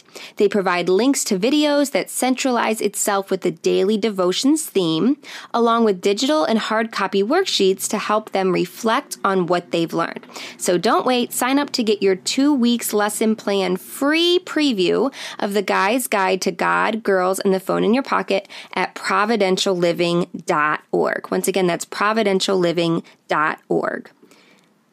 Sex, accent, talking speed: female, American, 145 wpm